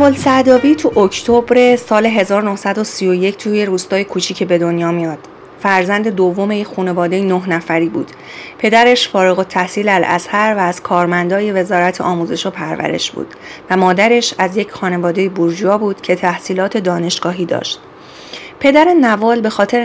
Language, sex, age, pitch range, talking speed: Persian, female, 30-49, 180-215 Hz, 140 wpm